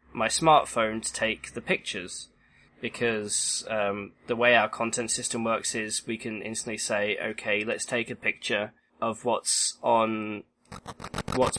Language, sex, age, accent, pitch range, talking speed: English, male, 20-39, British, 105-125 Hz, 145 wpm